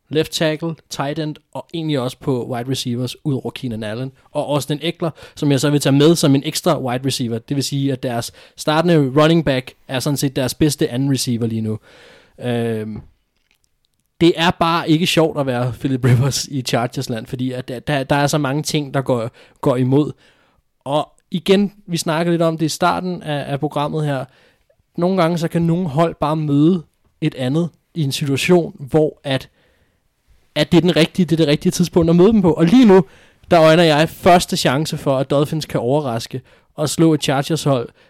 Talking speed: 200 wpm